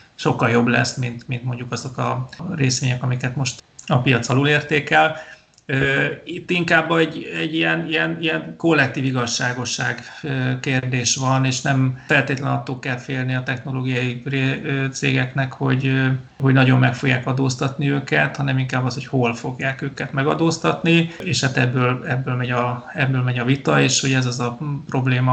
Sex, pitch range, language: male, 130-140 Hz, Hungarian